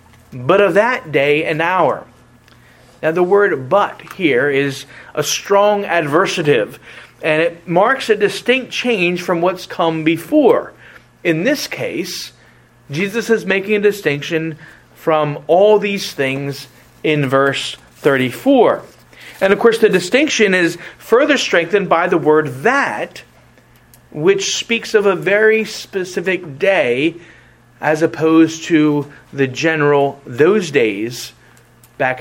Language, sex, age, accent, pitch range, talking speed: English, male, 40-59, American, 145-205 Hz, 125 wpm